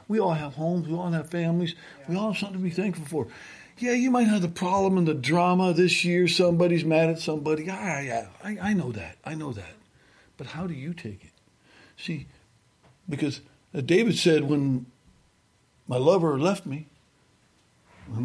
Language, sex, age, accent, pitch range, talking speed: English, male, 60-79, American, 140-185 Hz, 180 wpm